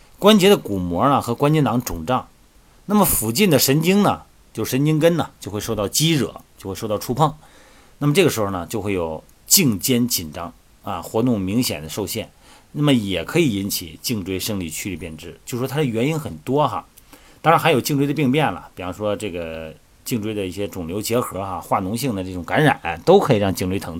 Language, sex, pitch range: Chinese, male, 90-130 Hz